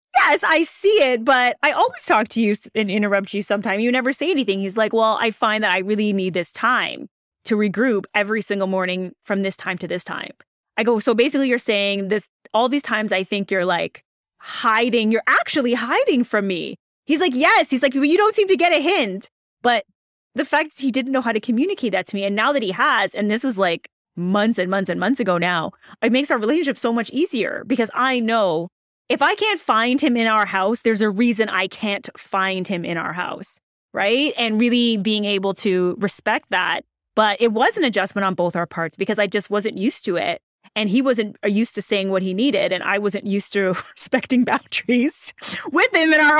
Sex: female